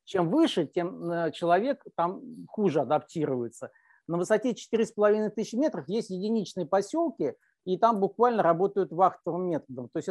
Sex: male